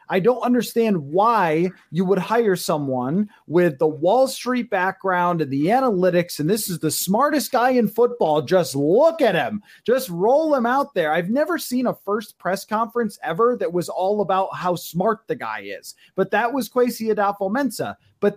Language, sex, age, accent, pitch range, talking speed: English, male, 30-49, American, 185-245 Hz, 185 wpm